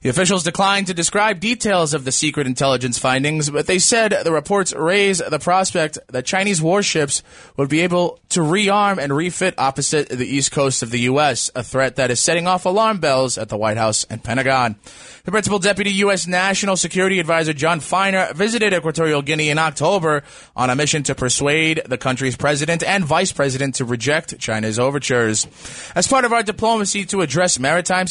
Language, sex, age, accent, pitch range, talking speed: English, male, 20-39, American, 130-190 Hz, 185 wpm